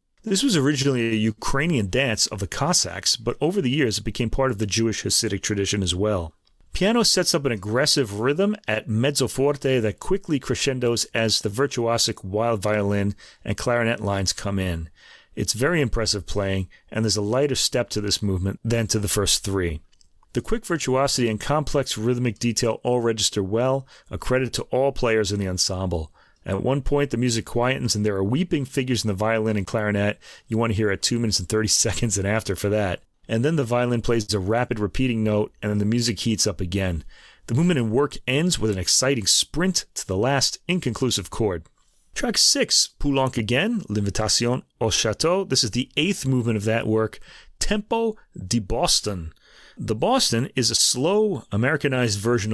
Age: 40-59